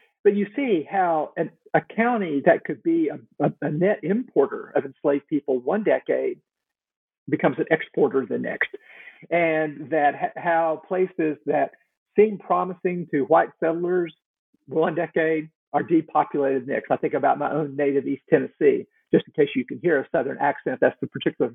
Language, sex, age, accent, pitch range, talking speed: English, male, 50-69, American, 145-240 Hz, 165 wpm